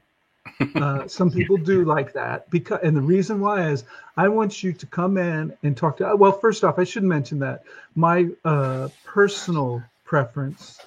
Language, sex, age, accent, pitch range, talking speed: English, male, 50-69, American, 135-175 Hz, 175 wpm